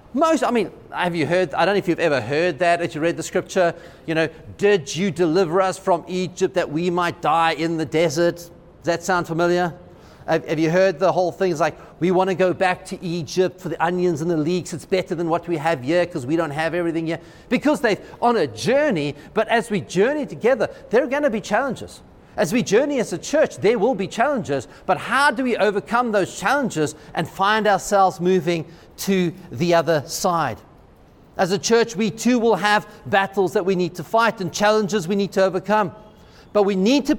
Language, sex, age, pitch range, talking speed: English, male, 40-59, 165-205 Hz, 220 wpm